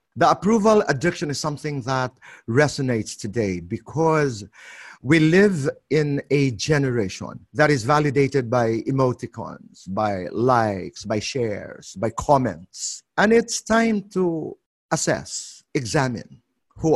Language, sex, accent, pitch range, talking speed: English, male, Filipino, 120-165 Hz, 115 wpm